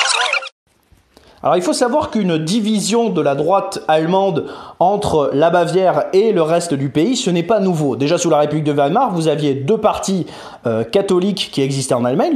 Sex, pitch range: male, 145-195 Hz